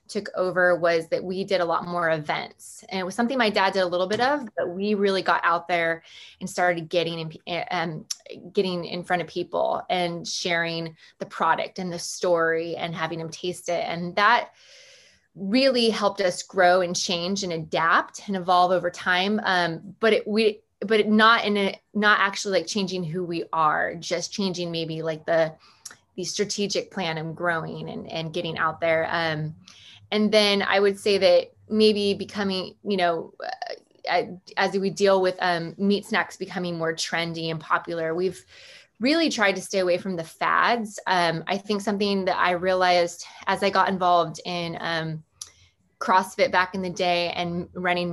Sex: female